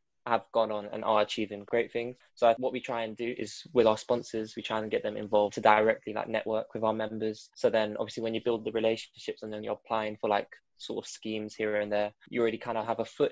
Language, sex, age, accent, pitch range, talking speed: English, male, 10-29, British, 105-120 Hz, 260 wpm